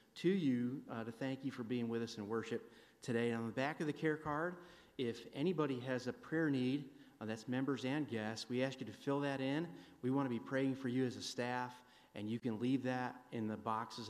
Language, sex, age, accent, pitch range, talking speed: English, male, 30-49, American, 115-135 Hz, 240 wpm